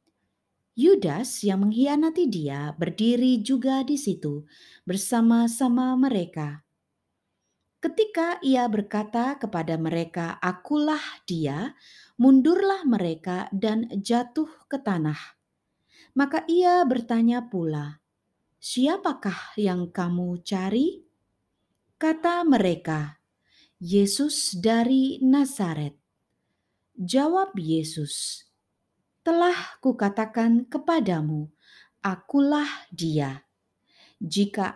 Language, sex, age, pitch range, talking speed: Indonesian, female, 20-39, 180-280 Hz, 75 wpm